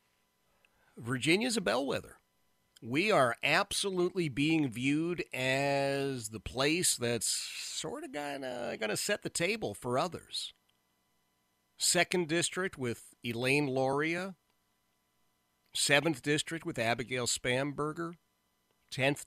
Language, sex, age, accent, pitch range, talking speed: English, male, 50-69, American, 105-155 Hz, 100 wpm